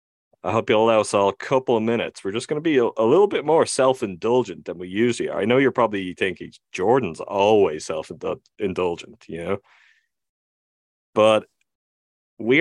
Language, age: English, 30-49